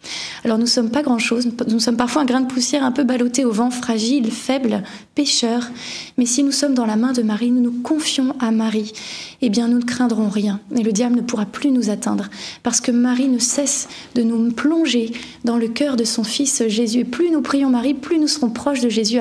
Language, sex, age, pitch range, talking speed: French, female, 20-39, 230-270 Hz, 240 wpm